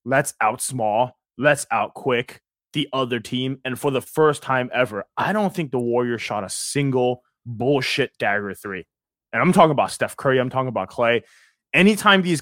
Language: English